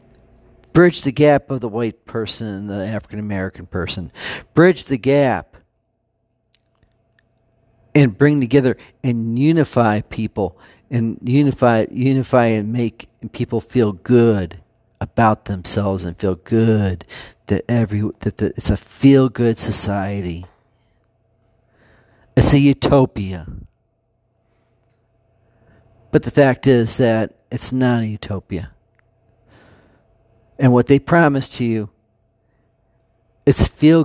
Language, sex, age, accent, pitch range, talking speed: English, male, 40-59, American, 110-130 Hz, 110 wpm